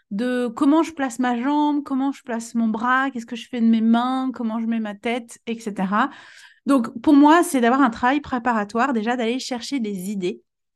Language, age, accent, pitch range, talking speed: French, 30-49, French, 210-260 Hz, 205 wpm